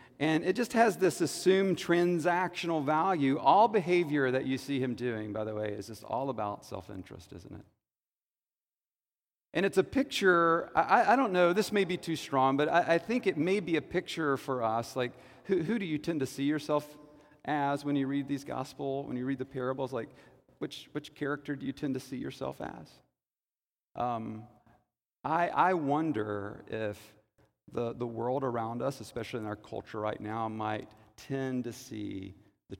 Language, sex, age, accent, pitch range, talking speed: English, male, 40-59, American, 115-165 Hz, 185 wpm